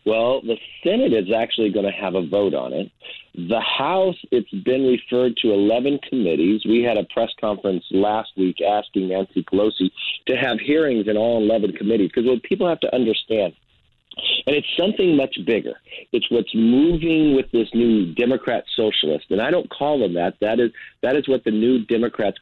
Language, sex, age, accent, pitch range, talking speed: English, male, 50-69, American, 100-130 Hz, 185 wpm